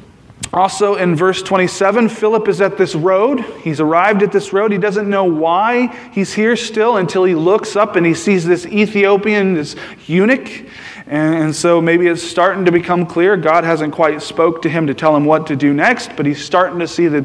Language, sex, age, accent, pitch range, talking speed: English, male, 30-49, American, 160-200 Hz, 205 wpm